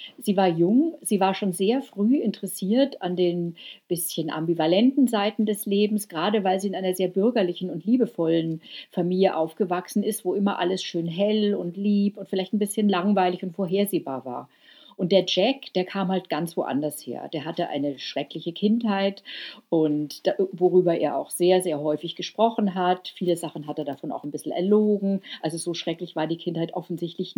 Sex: female